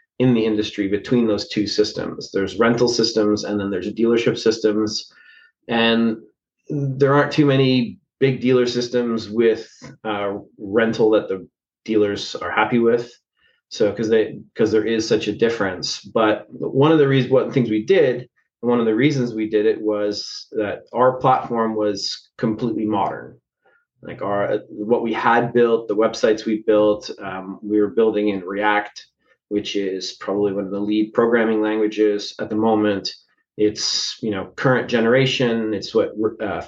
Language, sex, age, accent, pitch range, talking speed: English, male, 30-49, American, 105-125 Hz, 165 wpm